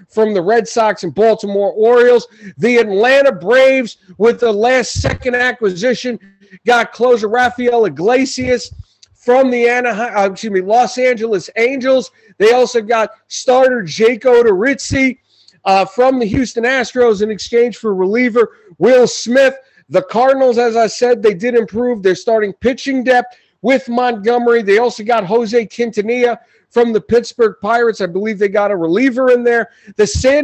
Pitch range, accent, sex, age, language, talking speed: 220-255 Hz, American, male, 40-59, English, 150 wpm